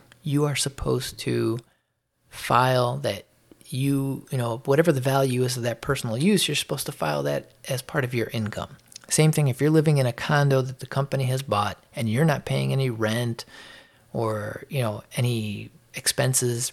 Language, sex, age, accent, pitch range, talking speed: English, male, 30-49, American, 115-140 Hz, 185 wpm